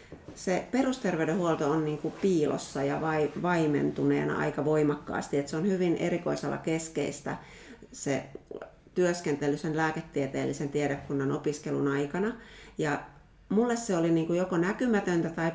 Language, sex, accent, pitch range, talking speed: Finnish, female, native, 145-175 Hz, 105 wpm